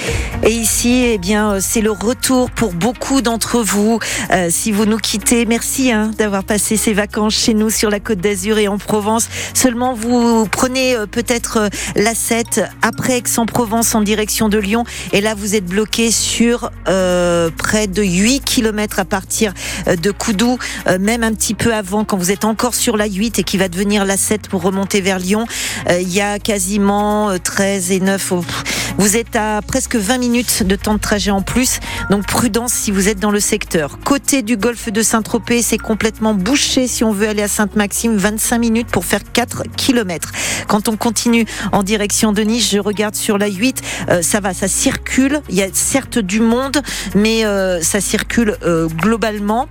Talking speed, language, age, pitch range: 195 wpm, French, 40-59, 200-230 Hz